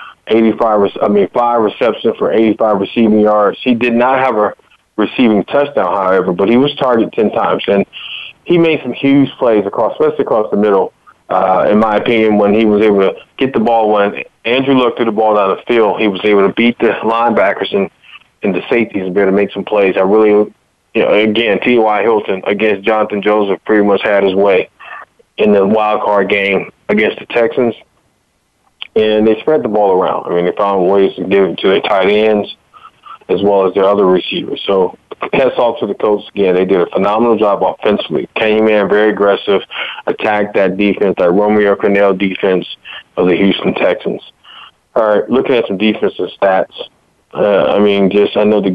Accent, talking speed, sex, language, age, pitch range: American, 200 wpm, male, English, 20-39, 100-110 Hz